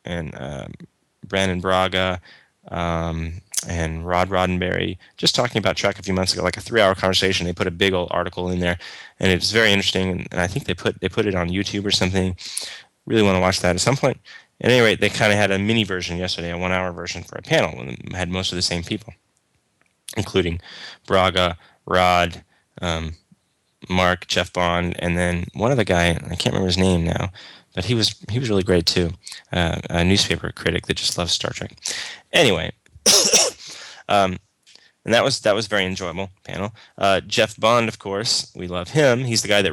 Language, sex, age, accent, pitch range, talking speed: English, male, 10-29, American, 90-100 Hz, 205 wpm